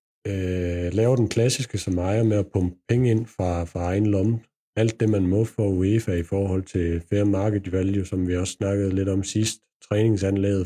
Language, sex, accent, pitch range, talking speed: Danish, male, native, 90-110 Hz, 190 wpm